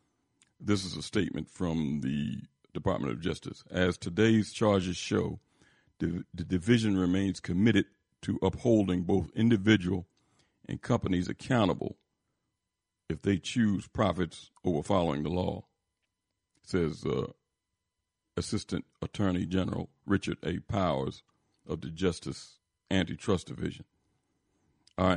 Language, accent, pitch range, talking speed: English, American, 85-100 Hz, 110 wpm